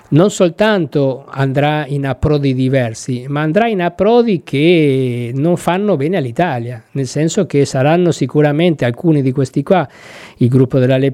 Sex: male